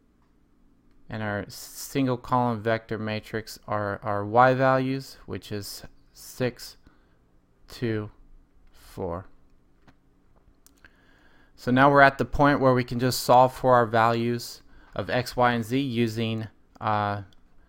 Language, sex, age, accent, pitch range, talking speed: English, male, 20-39, American, 90-120 Hz, 120 wpm